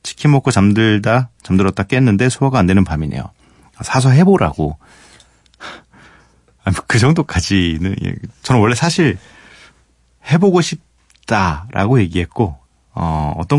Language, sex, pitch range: Korean, male, 80-120 Hz